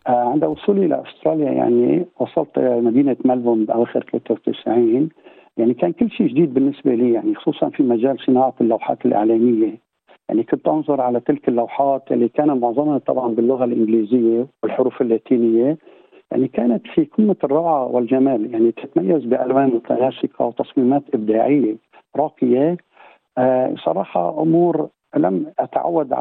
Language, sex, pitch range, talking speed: Arabic, male, 120-150 Hz, 130 wpm